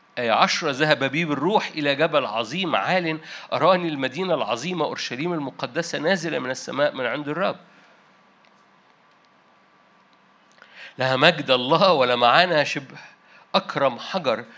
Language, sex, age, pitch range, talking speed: Arabic, male, 50-69, 150-190 Hz, 115 wpm